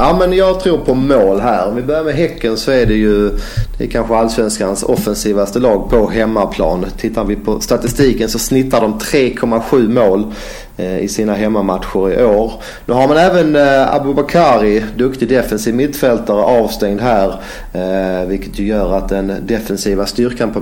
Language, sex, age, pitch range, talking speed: English, male, 40-59, 105-130 Hz, 160 wpm